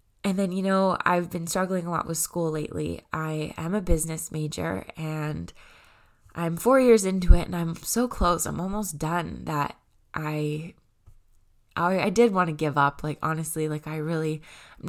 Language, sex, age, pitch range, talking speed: English, female, 20-39, 155-180 Hz, 180 wpm